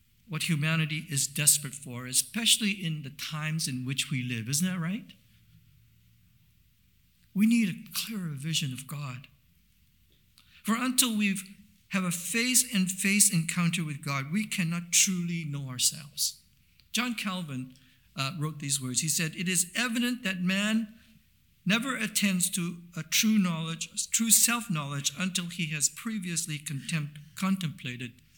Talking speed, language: 140 wpm, English